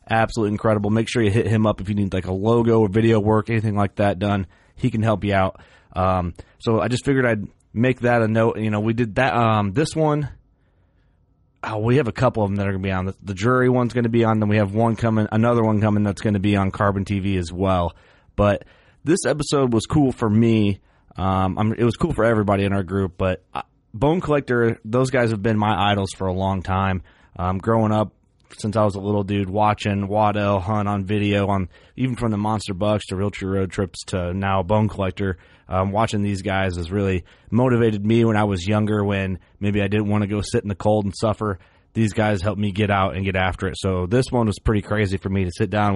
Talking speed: 245 wpm